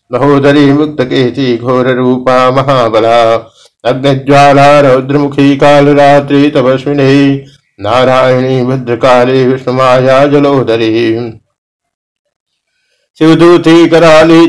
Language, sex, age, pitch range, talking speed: Hindi, male, 60-79, 125-145 Hz, 55 wpm